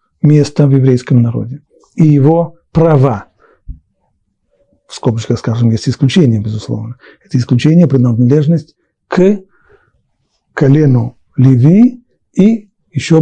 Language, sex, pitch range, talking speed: Russian, male, 130-165 Hz, 95 wpm